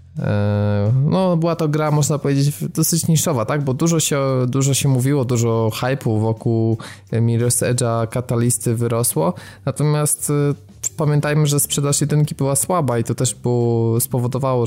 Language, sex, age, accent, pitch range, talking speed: Polish, male, 20-39, native, 115-135 Hz, 140 wpm